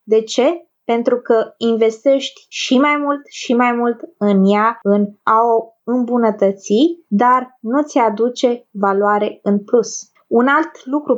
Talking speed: 145 wpm